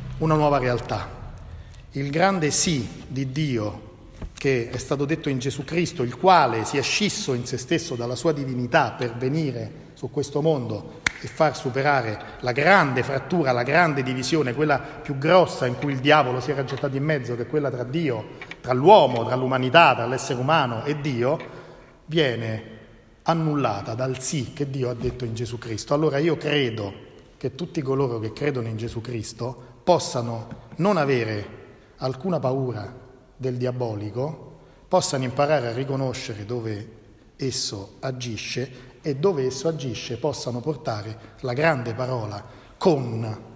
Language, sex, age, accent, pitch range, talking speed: Italian, male, 40-59, native, 115-145 Hz, 155 wpm